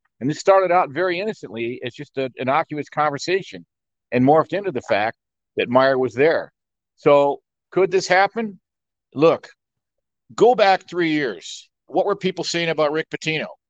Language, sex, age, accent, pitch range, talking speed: English, male, 50-69, American, 150-200 Hz, 160 wpm